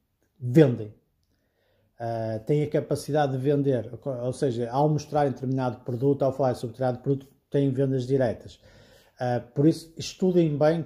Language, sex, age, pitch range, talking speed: Portuguese, male, 50-69, 125-145 Hz, 135 wpm